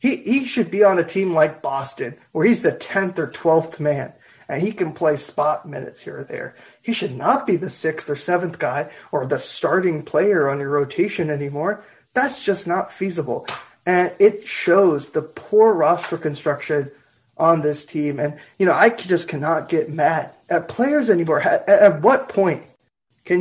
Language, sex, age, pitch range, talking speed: English, male, 20-39, 155-205 Hz, 185 wpm